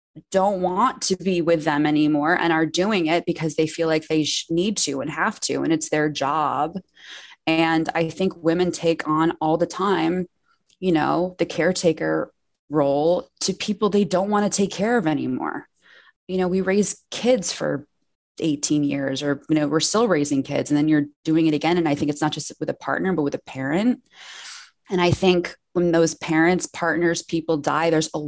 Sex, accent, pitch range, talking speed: female, American, 155-195 Hz, 200 wpm